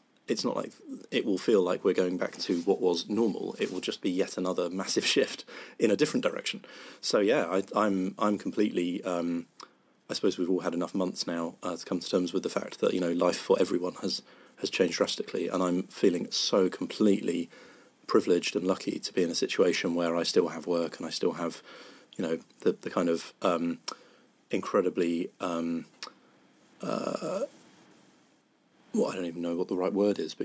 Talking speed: 200 wpm